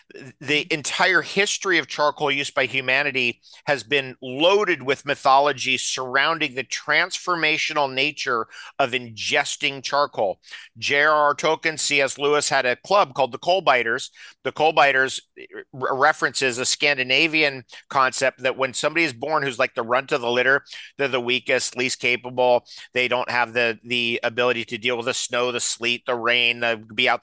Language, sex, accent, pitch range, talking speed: English, male, American, 125-155 Hz, 160 wpm